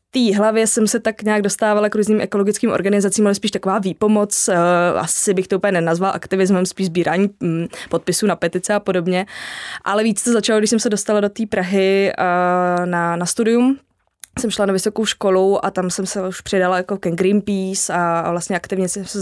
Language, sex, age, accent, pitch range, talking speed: Czech, female, 20-39, native, 185-220 Hz, 195 wpm